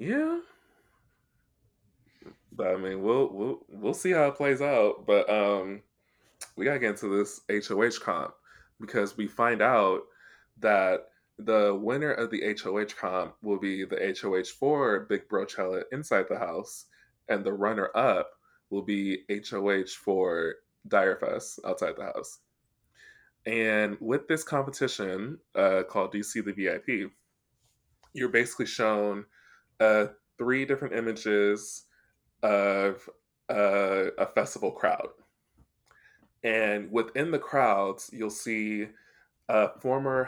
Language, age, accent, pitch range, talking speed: English, 20-39, American, 100-130 Hz, 130 wpm